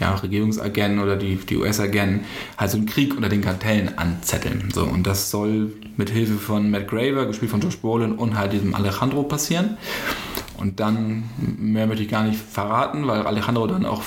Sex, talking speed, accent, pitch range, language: male, 190 wpm, German, 105-125 Hz, German